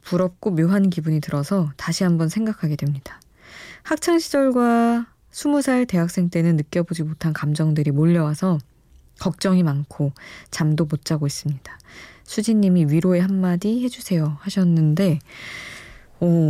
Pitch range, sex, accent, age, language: 150-220 Hz, female, native, 20-39, Korean